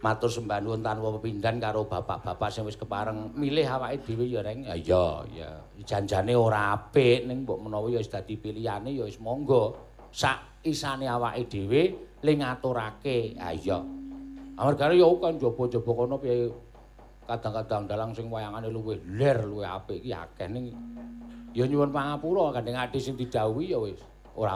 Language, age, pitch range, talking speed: Indonesian, 50-69, 110-145 Hz, 160 wpm